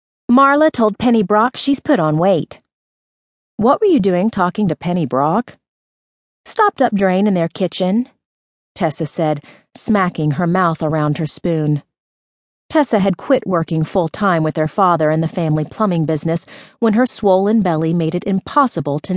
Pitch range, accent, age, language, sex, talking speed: 155-215 Hz, American, 40-59, English, female, 165 wpm